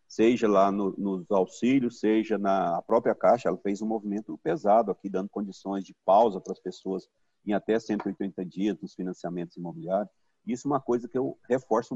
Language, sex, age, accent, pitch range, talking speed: Portuguese, male, 40-59, Brazilian, 95-115 Hz, 180 wpm